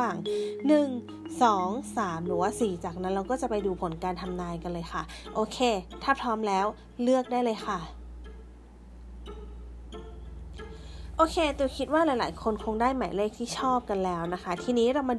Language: Thai